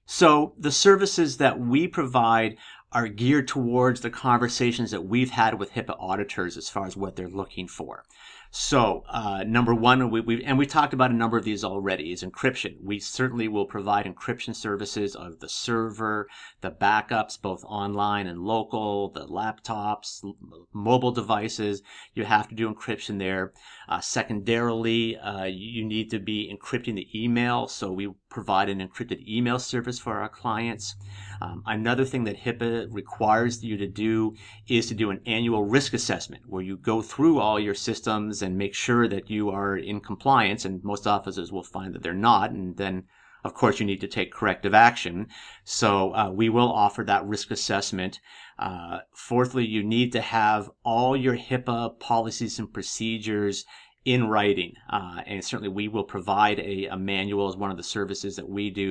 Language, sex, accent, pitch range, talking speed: English, male, American, 100-120 Hz, 175 wpm